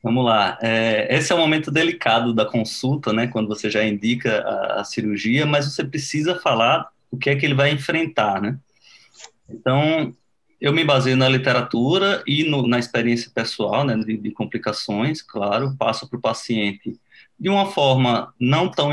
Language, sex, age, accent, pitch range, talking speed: Portuguese, male, 20-39, Brazilian, 120-150 Hz, 170 wpm